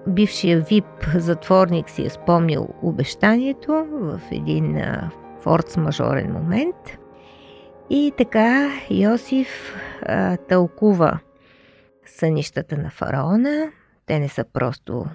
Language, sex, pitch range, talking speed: Bulgarian, female, 165-220 Hz, 85 wpm